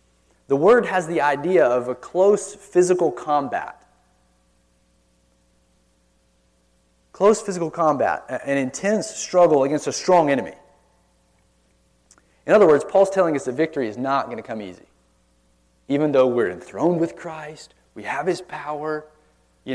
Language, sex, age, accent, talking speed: English, male, 30-49, American, 135 wpm